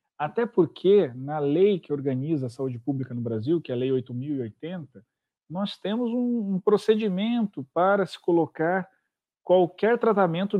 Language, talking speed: Portuguese, 145 wpm